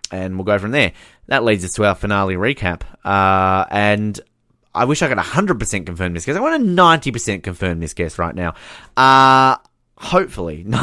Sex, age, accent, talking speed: male, 20-39, Australian, 185 wpm